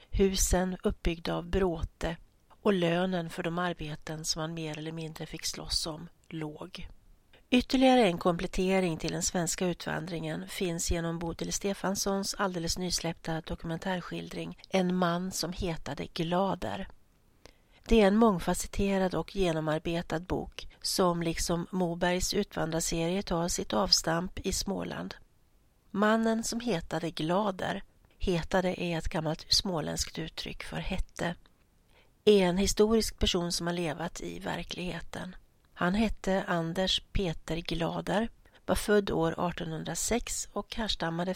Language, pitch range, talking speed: Swedish, 165-195 Hz, 120 wpm